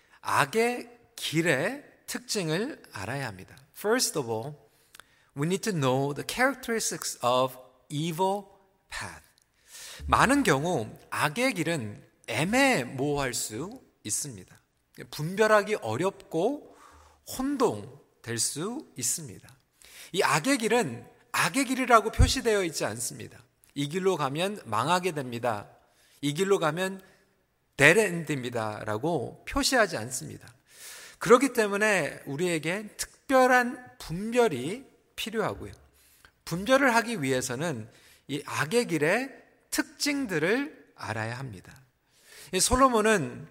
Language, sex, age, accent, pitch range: Korean, male, 40-59, native, 140-235 Hz